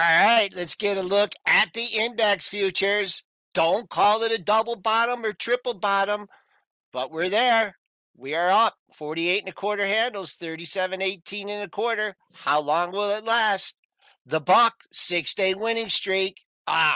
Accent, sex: American, male